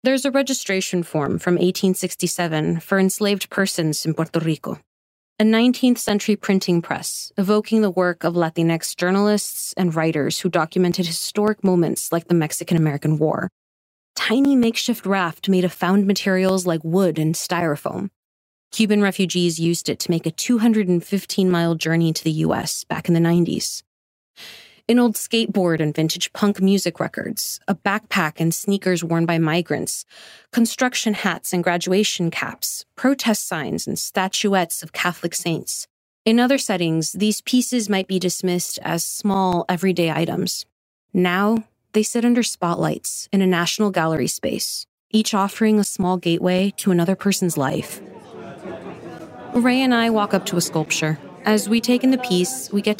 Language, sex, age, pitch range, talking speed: English, female, 30-49, 170-210 Hz, 150 wpm